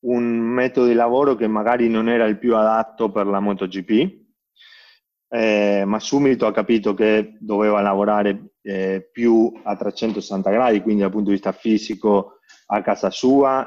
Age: 20-39